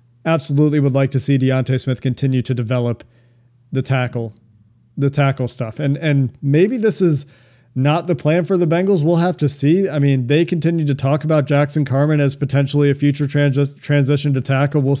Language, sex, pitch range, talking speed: English, male, 135-150 Hz, 190 wpm